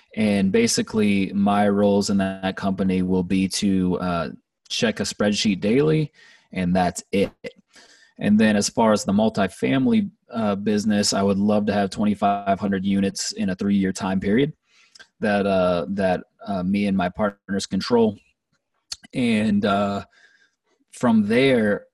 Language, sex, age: English, male, 20-39